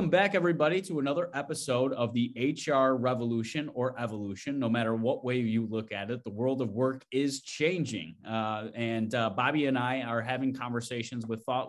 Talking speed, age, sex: 185 wpm, 20-39, male